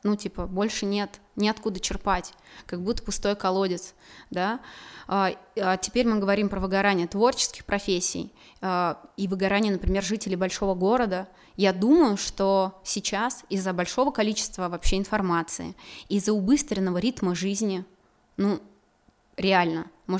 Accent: native